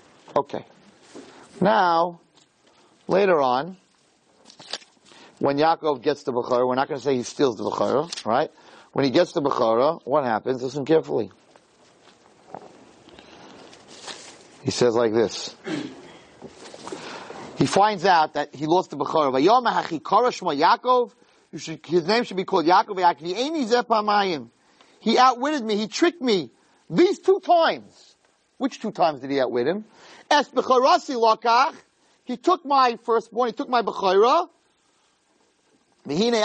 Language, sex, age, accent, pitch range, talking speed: English, male, 40-59, American, 160-245 Hz, 115 wpm